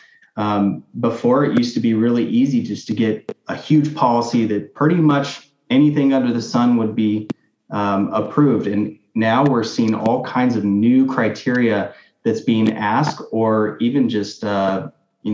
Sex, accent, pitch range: male, American, 110-140 Hz